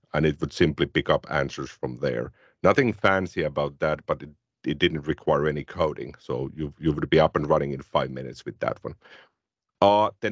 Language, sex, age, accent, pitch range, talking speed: English, male, 50-69, Finnish, 75-90 Hz, 210 wpm